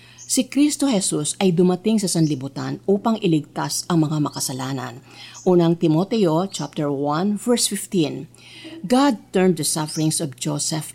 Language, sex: Filipino, female